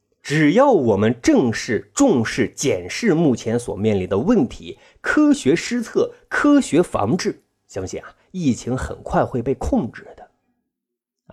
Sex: male